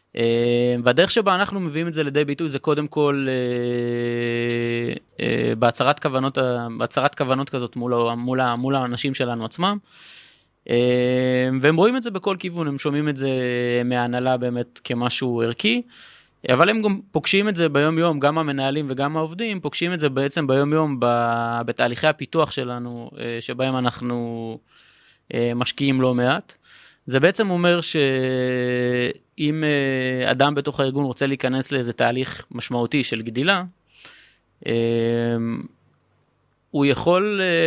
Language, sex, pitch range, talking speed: Hebrew, male, 120-155 Hz, 125 wpm